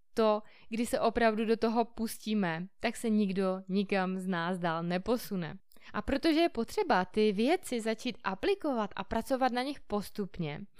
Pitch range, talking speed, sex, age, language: 200-255 Hz, 155 wpm, female, 20-39, Czech